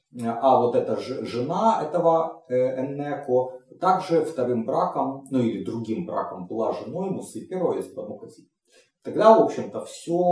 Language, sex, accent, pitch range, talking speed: Russian, male, native, 125-185 Hz, 140 wpm